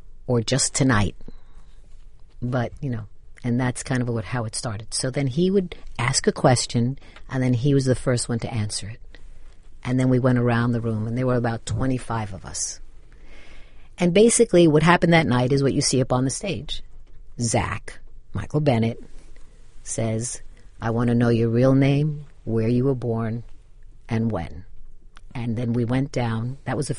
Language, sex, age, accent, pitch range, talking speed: English, female, 50-69, American, 115-150 Hz, 185 wpm